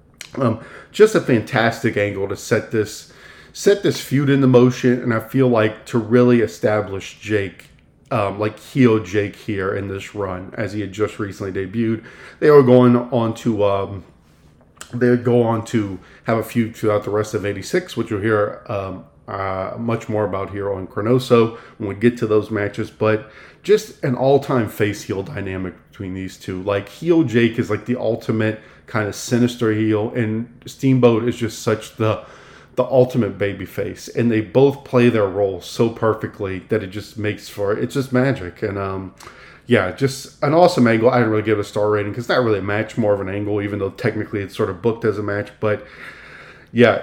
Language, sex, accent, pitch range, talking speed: English, male, American, 105-125 Hz, 195 wpm